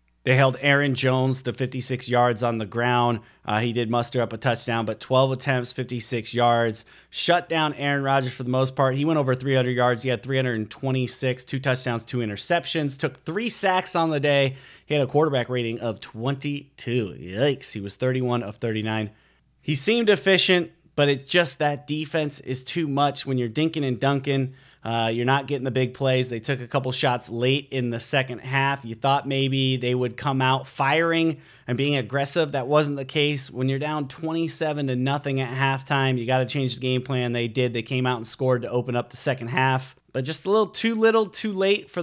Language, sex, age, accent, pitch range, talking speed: English, male, 30-49, American, 125-150 Hz, 205 wpm